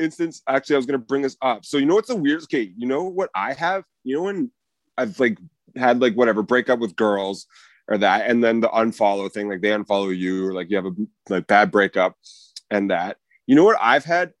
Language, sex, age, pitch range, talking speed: English, male, 30-49, 105-145 Hz, 240 wpm